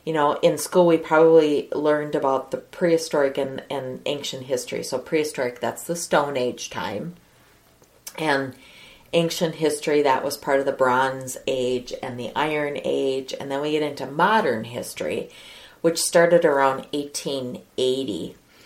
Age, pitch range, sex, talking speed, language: 40-59, 135-165 Hz, female, 150 wpm, English